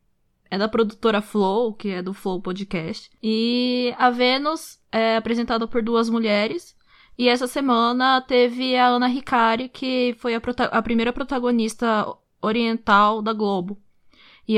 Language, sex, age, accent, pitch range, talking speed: Portuguese, female, 10-29, Brazilian, 210-245 Hz, 145 wpm